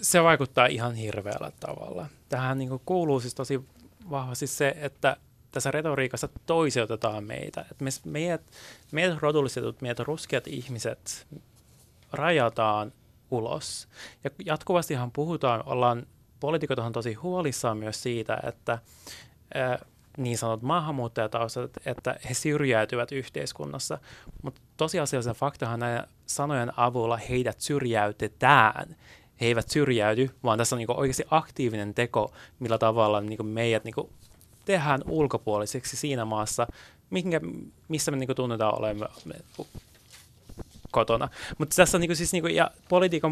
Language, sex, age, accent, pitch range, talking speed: Finnish, male, 20-39, native, 115-150 Hz, 115 wpm